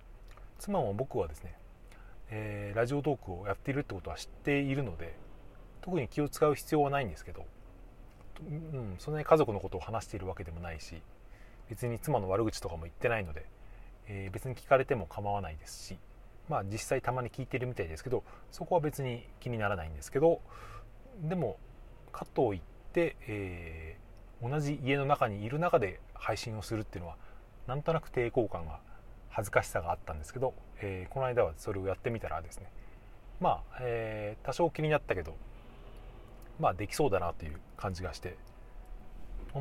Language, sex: Japanese, male